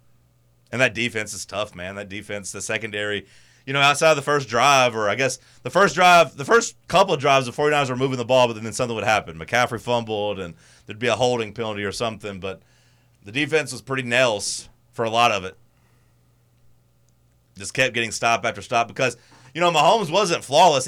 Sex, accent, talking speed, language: male, American, 205 wpm, English